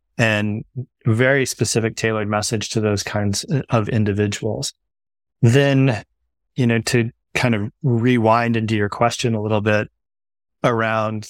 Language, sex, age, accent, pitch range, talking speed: English, male, 20-39, American, 105-115 Hz, 130 wpm